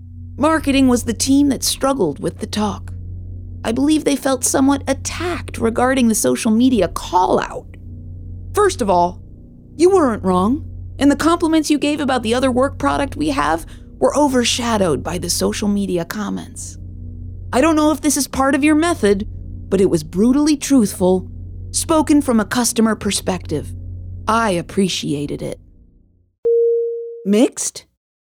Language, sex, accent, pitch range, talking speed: English, female, American, 180-300 Hz, 145 wpm